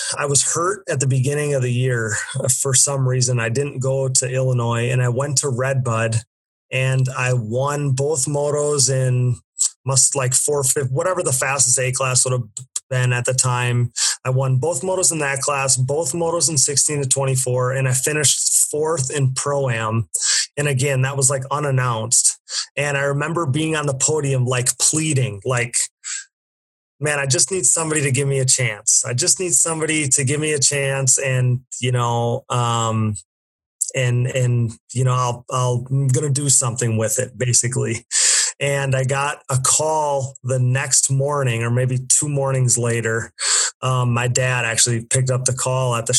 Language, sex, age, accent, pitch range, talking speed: English, male, 30-49, American, 125-140 Hz, 180 wpm